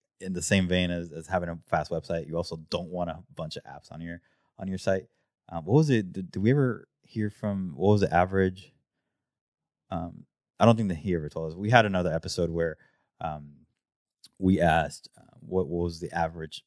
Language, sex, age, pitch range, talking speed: English, male, 20-39, 80-95 Hz, 215 wpm